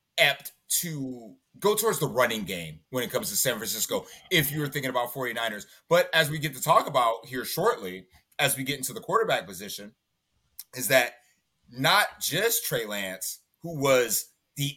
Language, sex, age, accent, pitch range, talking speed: English, male, 30-49, American, 125-165 Hz, 175 wpm